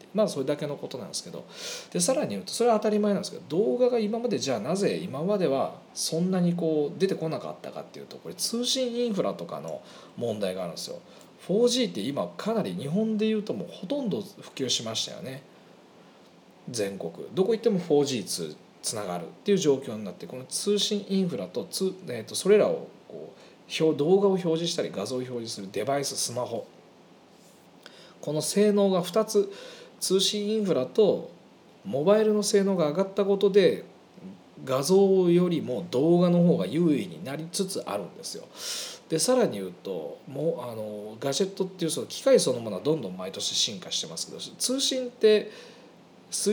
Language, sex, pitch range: Japanese, male, 150-215 Hz